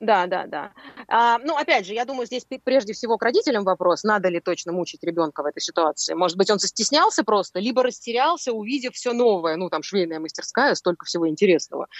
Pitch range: 175-245 Hz